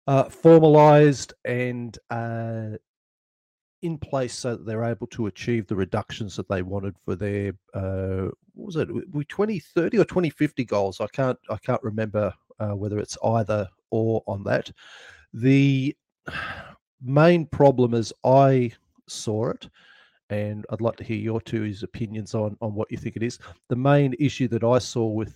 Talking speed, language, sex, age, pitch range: 160 wpm, English, male, 40-59, 105-130 Hz